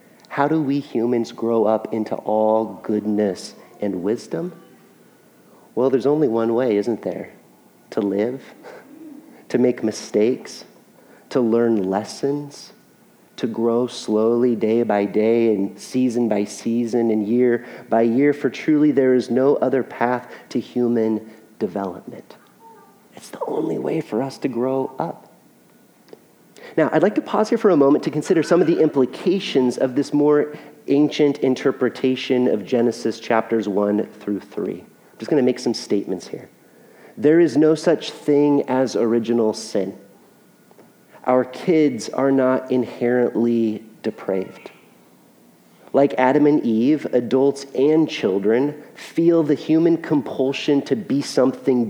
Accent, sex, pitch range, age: American, male, 115-145 Hz, 30-49